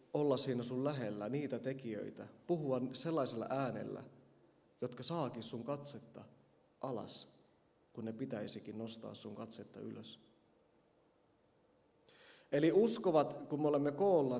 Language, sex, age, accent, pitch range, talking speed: Finnish, male, 30-49, native, 125-165 Hz, 115 wpm